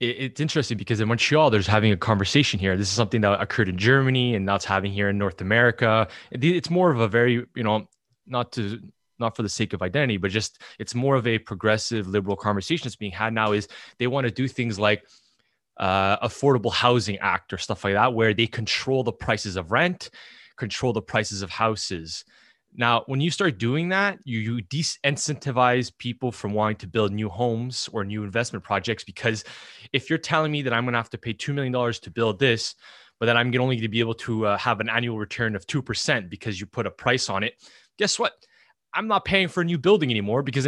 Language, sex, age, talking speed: English, male, 20-39, 225 wpm